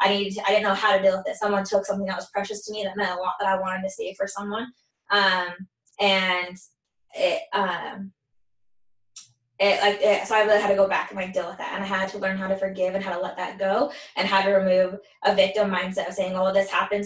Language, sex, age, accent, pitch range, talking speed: English, female, 10-29, American, 190-205 Hz, 265 wpm